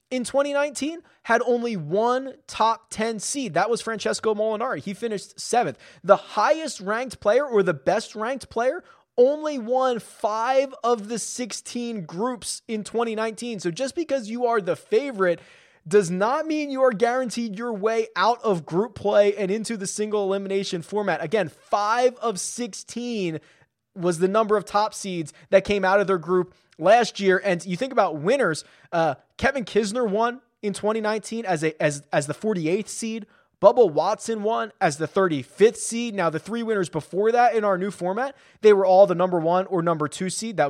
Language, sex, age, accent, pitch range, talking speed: English, male, 20-39, American, 180-235 Hz, 180 wpm